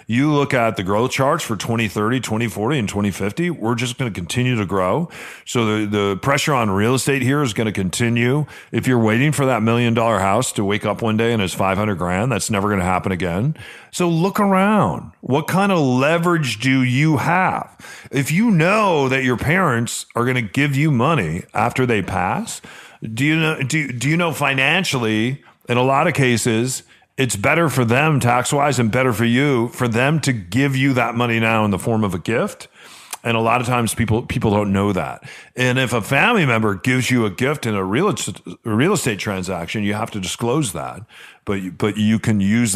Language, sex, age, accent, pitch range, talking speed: English, male, 40-59, American, 110-145 Hz, 215 wpm